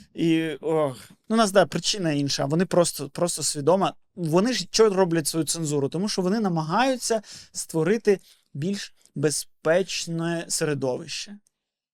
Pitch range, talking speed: 155-190 Hz, 120 wpm